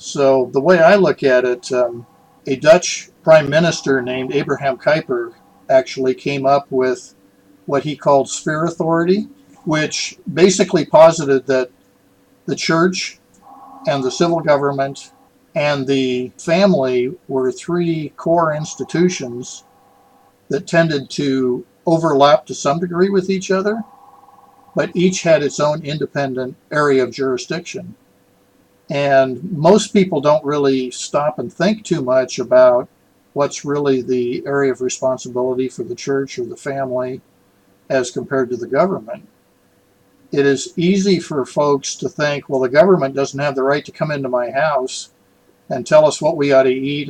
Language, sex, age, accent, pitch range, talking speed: English, male, 60-79, American, 130-185 Hz, 145 wpm